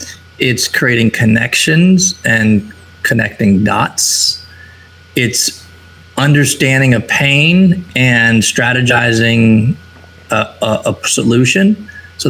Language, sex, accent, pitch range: English, male, American, 110-135 Hz